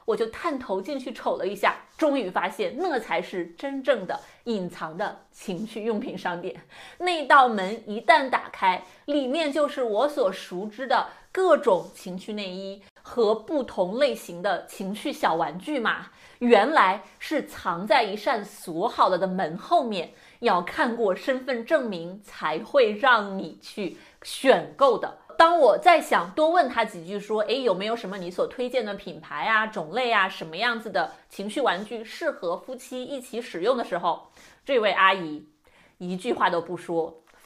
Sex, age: female, 30-49